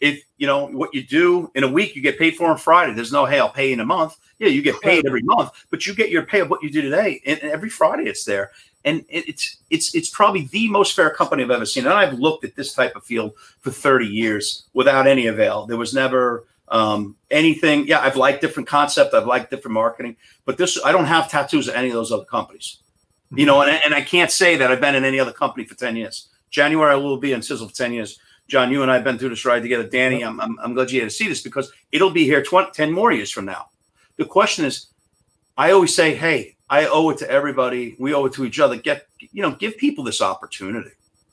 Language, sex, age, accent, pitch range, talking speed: English, male, 40-59, American, 125-205 Hz, 255 wpm